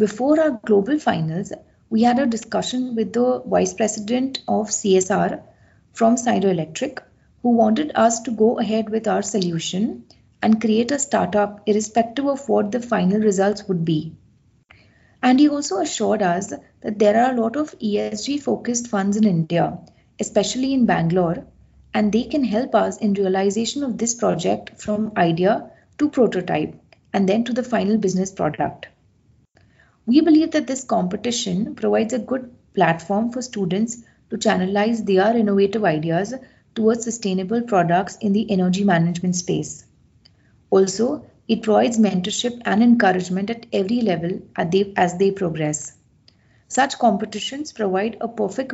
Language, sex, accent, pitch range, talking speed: English, female, Indian, 195-235 Hz, 145 wpm